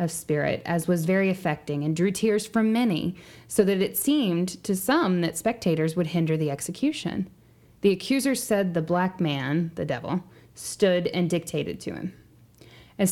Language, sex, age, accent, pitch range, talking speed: English, female, 10-29, American, 160-195 Hz, 170 wpm